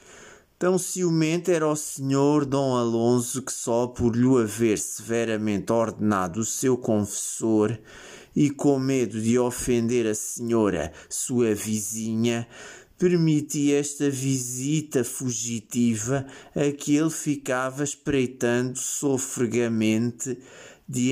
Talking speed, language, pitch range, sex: 105 wpm, Portuguese, 115-135 Hz, male